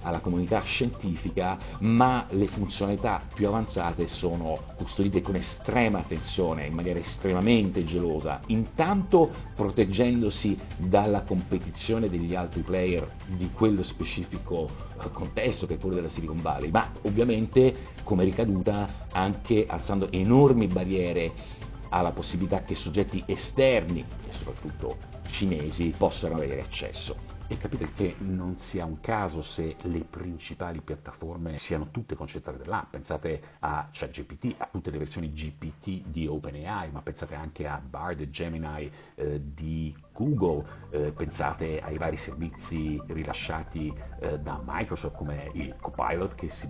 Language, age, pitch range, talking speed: Italian, 50-69, 80-100 Hz, 130 wpm